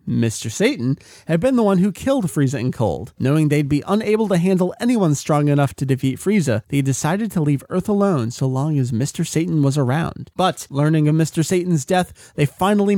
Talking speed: 205 wpm